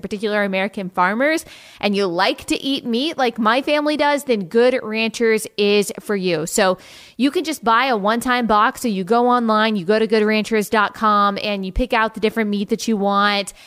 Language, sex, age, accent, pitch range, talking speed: English, female, 20-39, American, 205-255 Hz, 200 wpm